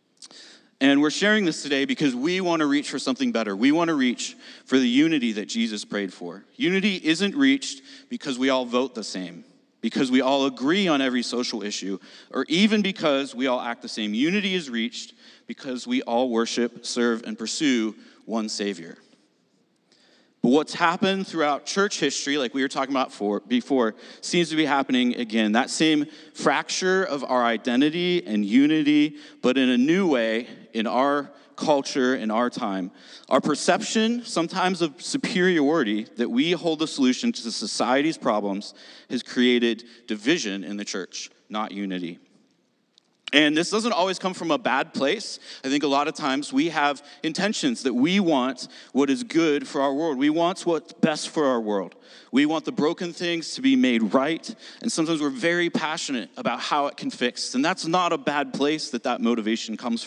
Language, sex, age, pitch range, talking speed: English, male, 40-59, 125-200 Hz, 180 wpm